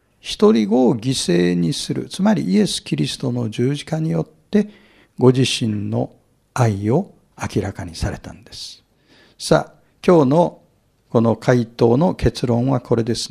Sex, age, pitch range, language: male, 60-79, 115-180 Hz, Japanese